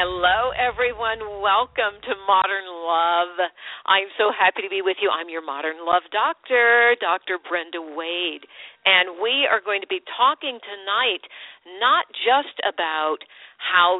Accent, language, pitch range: American, English, 175-255 Hz